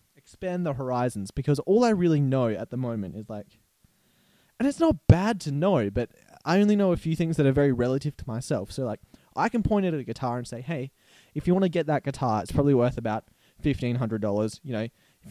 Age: 20-39